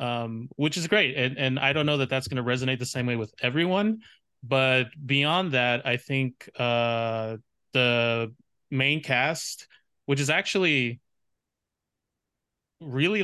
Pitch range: 125-145 Hz